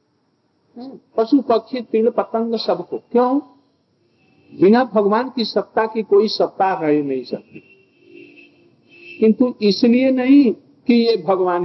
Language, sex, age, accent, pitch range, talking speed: Hindi, male, 50-69, native, 175-245 Hz, 115 wpm